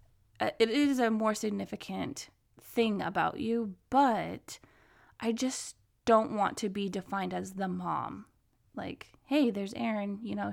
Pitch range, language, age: 200-260 Hz, English, 20-39